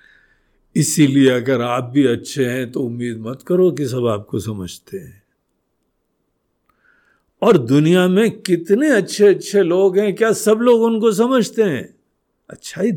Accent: native